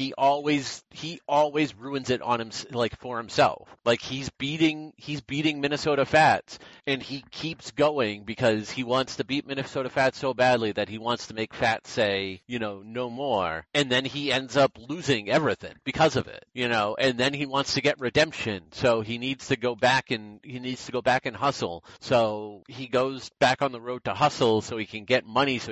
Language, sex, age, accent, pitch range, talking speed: English, male, 30-49, American, 115-140 Hz, 210 wpm